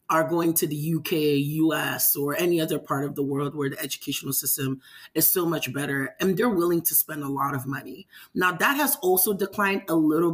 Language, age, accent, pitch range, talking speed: English, 30-49, American, 150-195 Hz, 215 wpm